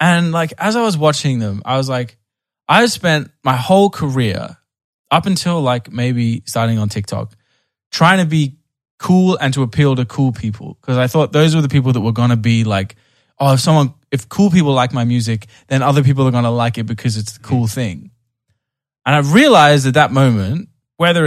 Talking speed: 210 wpm